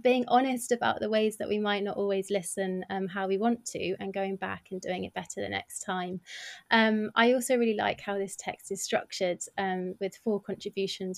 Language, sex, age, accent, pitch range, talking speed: English, female, 20-39, British, 185-215 Hz, 215 wpm